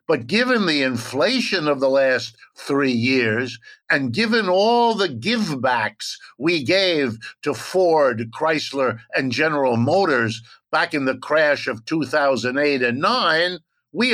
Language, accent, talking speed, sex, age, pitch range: English, American, 130 wpm, male, 60-79, 130-165 Hz